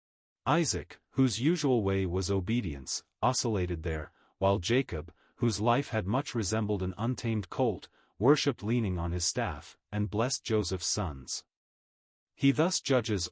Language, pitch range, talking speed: English, 95-120 Hz, 135 wpm